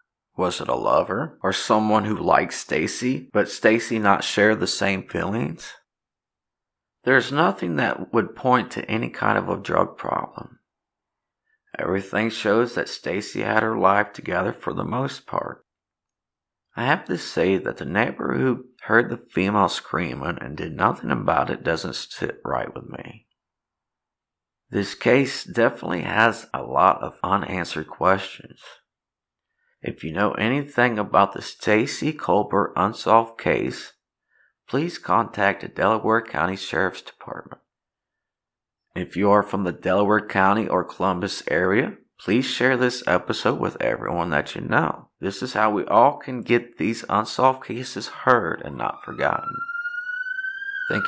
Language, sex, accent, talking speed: English, male, American, 145 wpm